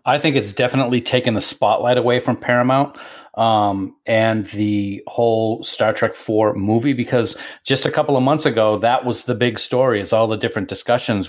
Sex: male